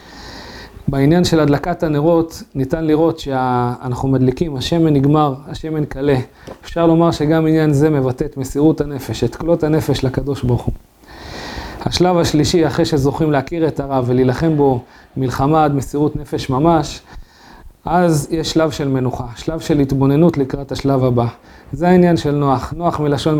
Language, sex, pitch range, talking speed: Hebrew, male, 135-160 Hz, 150 wpm